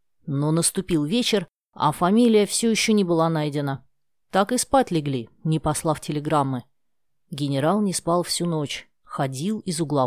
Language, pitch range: Russian, 150-215 Hz